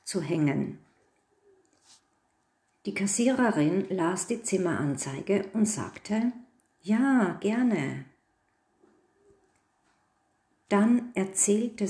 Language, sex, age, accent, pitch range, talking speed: German, female, 50-69, German, 180-245 Hz, 65 wpm